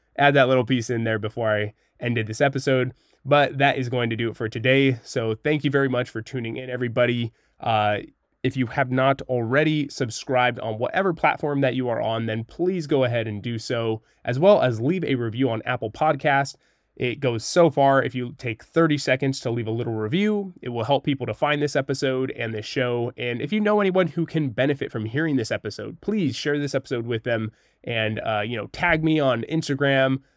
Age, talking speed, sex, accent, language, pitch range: 20-39, 215 wpm, male, American, English, 115-145 Hz